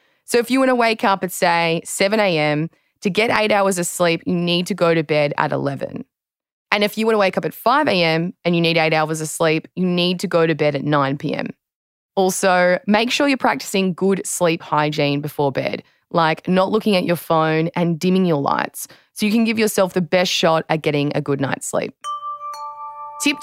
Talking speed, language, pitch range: 215 wpm, English, 160-215 Hz